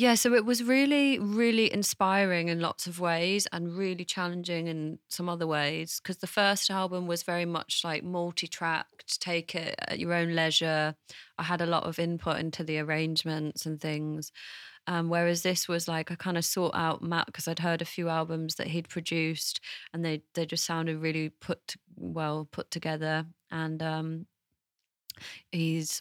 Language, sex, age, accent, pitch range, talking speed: English, female, 20-39, British, 160-175 Hz, 180 wpm